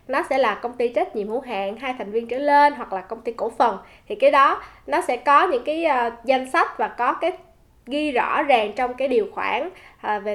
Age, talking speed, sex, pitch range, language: 10-29, 250 wpm, female, 215-300 Hz, Vietnamese